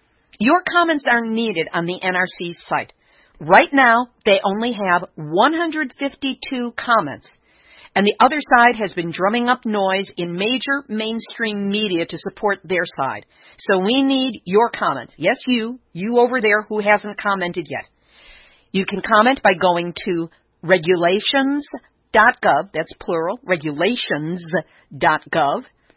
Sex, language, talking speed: female, English, 130 wpm